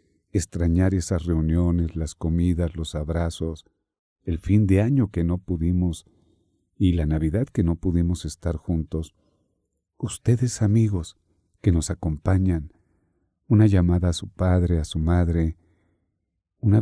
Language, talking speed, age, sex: Spanish, 130 wpm, 50-69, male